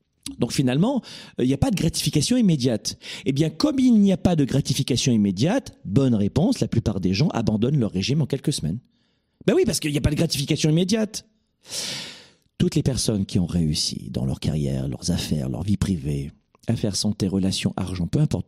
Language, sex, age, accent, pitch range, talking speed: French, male, 40-59, French, 95-140 Hz, 200 wpm